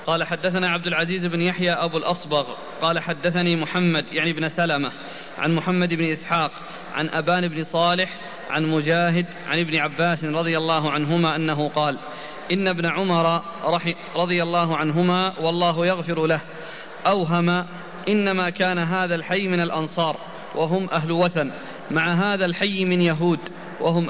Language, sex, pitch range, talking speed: Arabic, male, 165-190 Hz, 140 wpm